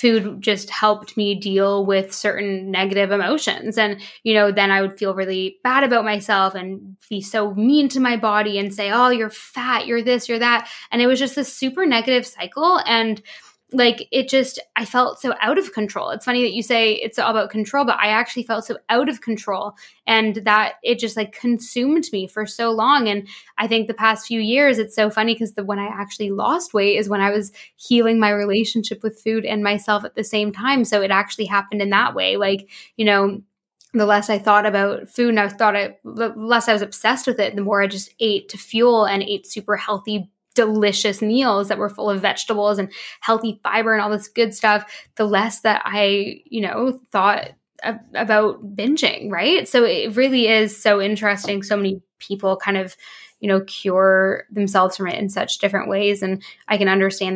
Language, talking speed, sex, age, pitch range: English, 210 wpm, female, 10-29, 195-225 Hz